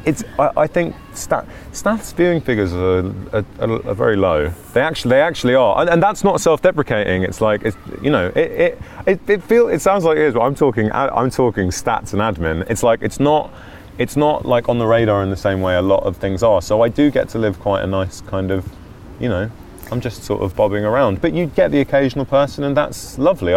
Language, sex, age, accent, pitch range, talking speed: English, male, 30-49, British, 90-125 Hz, 240 wpm